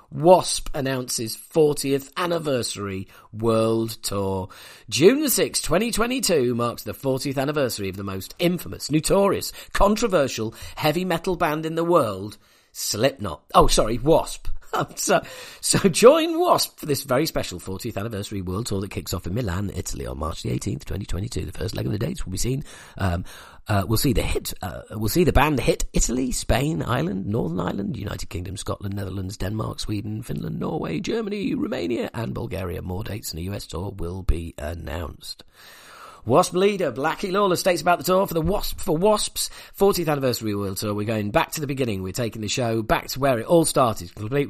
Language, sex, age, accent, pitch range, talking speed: English, male, 40-59, British, 105-165 Hz, 180 wpm